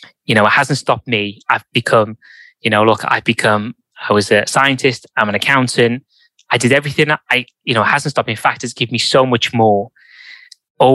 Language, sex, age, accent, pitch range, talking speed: English, male, 20-39, British, 110-135 Hz, 220 wpm